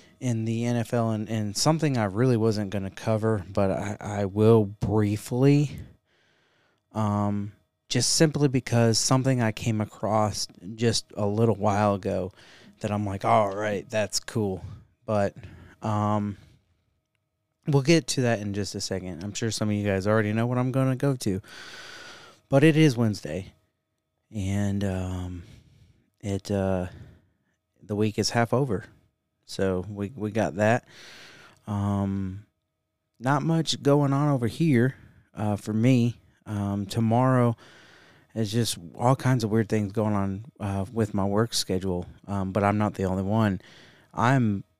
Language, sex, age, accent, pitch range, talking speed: English, male, 30-49, American, 100-120 Hz, 155 wpm